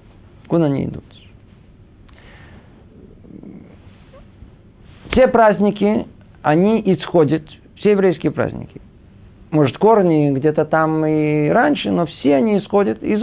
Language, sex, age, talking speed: Russian, male, 50-69, 95 wpm